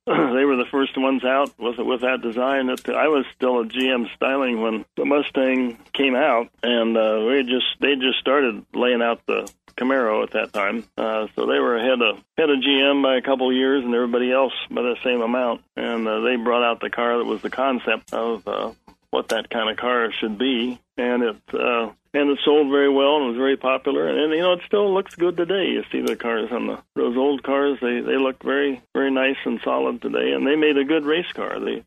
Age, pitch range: 60-79, 120-135 Hz